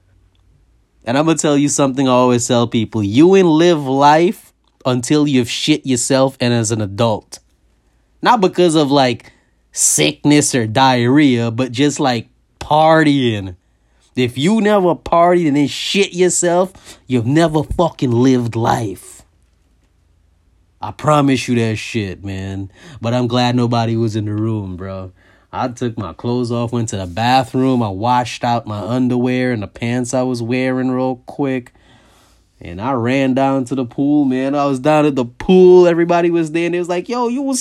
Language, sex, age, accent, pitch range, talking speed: English, male, 20-39, American, 115-150 Hz, 170 wpm